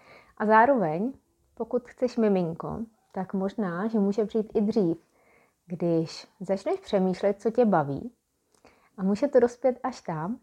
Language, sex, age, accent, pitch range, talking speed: Czech, female, 20-39, native, 175-225 Hz, 140 wpm